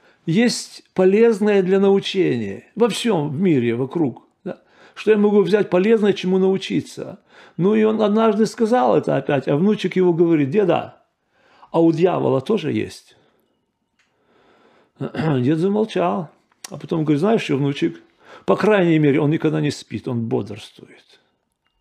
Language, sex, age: Russian, male, 40-59